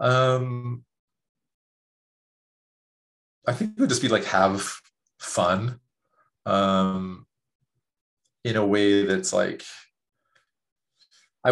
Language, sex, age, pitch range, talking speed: English, male, 30-49, 95-120 Hz, 90 wpm